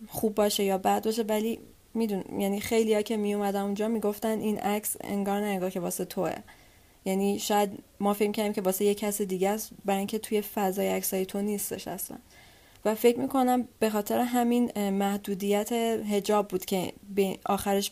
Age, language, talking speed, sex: 30-49, Persian, 175 wpm, female